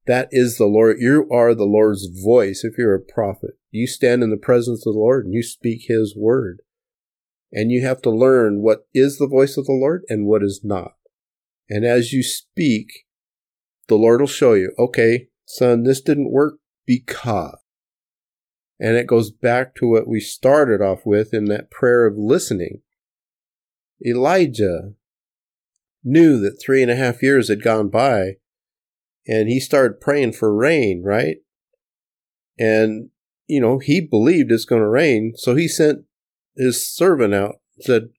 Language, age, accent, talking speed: English, 50-69, American, 165 wpm